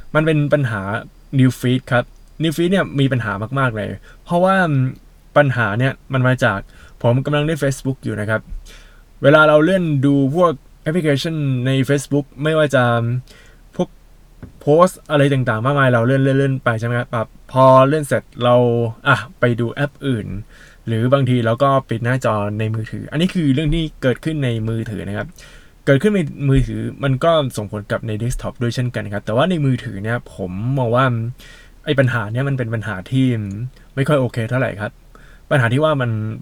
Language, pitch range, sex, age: Thai, 115-140 Hz, male, 20-39